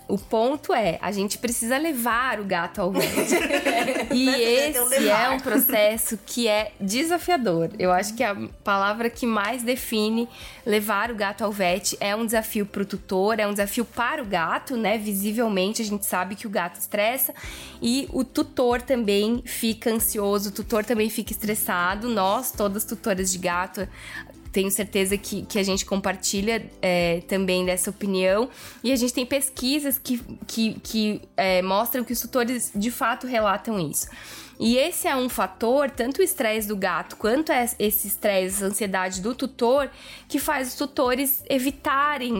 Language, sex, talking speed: Portuguese, female, 165 wpm